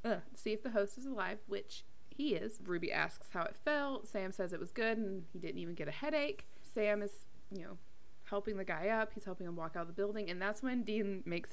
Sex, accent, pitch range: female, American, 190-250 Hz